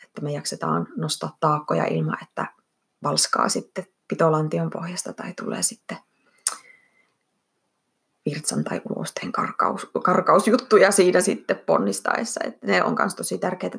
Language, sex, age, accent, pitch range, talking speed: Finnish, female, 20-39, native, 165-245 Hz, 120 wpm